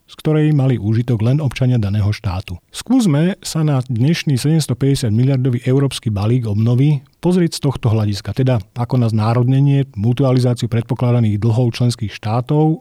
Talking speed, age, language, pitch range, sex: 140 wpm, 40-59, Slovak, 115-145 Hz, male